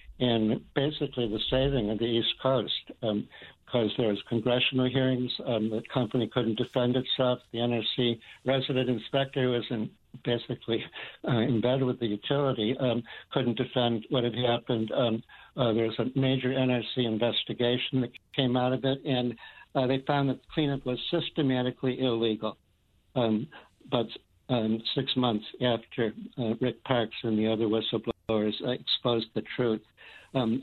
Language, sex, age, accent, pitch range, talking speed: English, male, 60-79, American, 110-130 Hz, 150 wpm